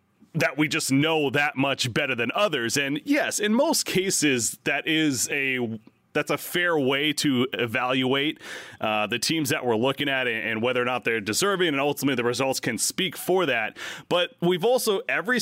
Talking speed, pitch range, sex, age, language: 185 wpm, 130-170 Hz, male, 30-49, English